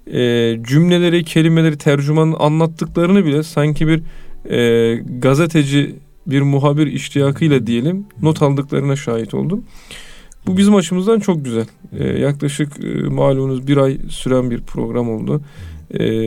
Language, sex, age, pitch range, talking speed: Turkish, male, 40-59, 125-160 Hz, 120 wpm